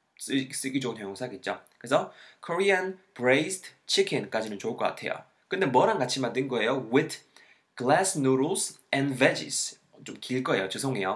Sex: male